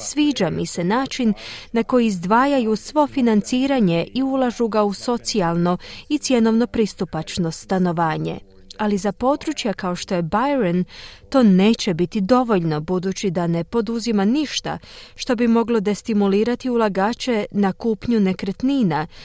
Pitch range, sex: 190-250 Hz, female